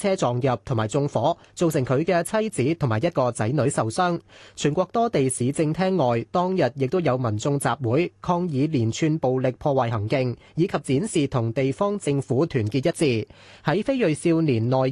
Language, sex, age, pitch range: Chinese, male, 30-49, 125-170 Hz